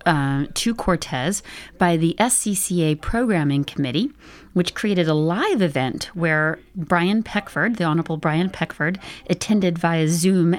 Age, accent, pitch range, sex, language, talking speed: 40-59, American, 150-180 Hz, female, English, 130 wpm